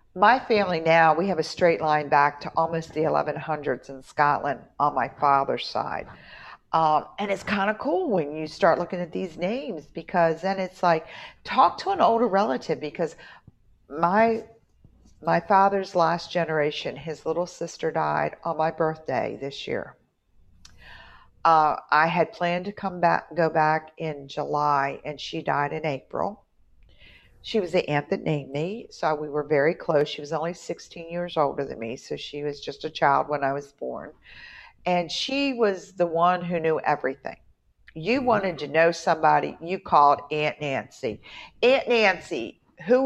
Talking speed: 170 wpm